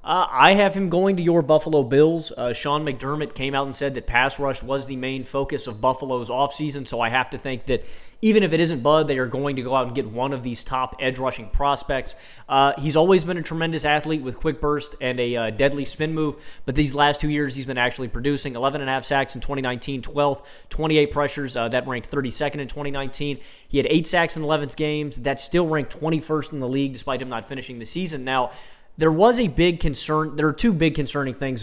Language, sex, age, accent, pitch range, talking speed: English, male, 20-39, American, 130-160 Hz, 235 wpm